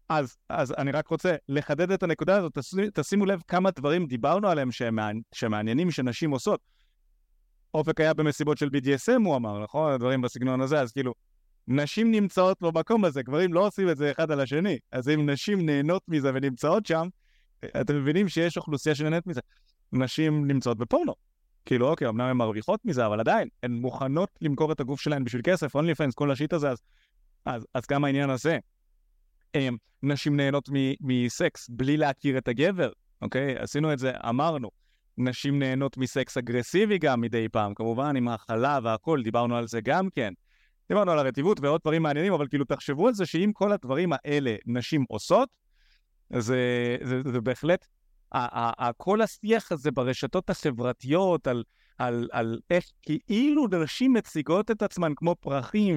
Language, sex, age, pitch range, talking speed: Hebrew, male, 30-49, 125-165 Hz, 160 wpm